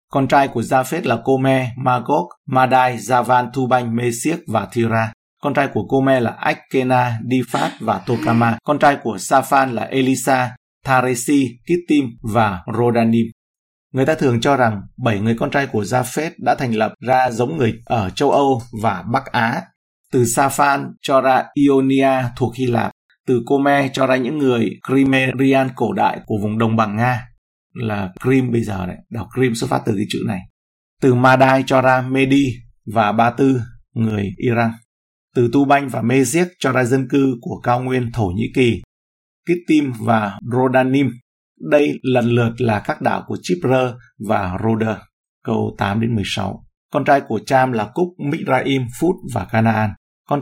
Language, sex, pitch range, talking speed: Vietnamese, male, 115-135 Hz, 170 wpm